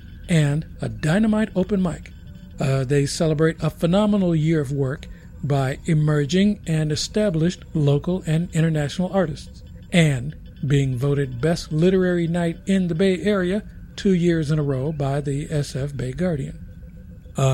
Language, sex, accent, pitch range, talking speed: English, male, American, 140-185 Hz, 145 wpm